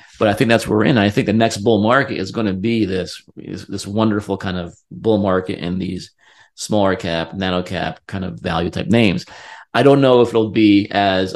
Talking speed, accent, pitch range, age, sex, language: 220 wpm, American, 95-120 Hz, 30-49, male, English